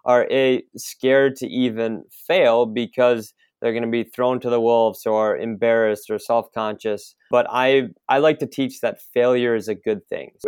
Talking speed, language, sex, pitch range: 190 wpm, English, male, 115-135 Hz